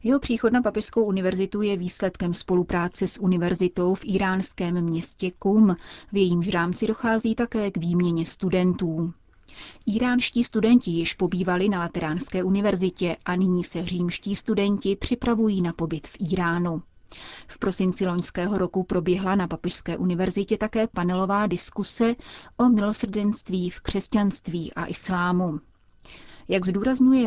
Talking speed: 130 wpm